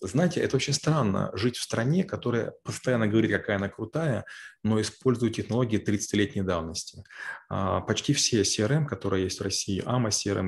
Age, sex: 20-39, male